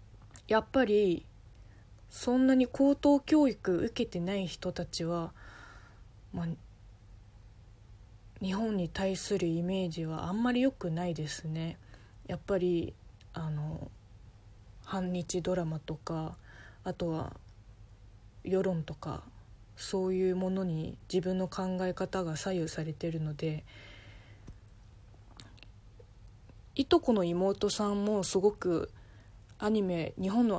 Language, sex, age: Japanese, female, 20-39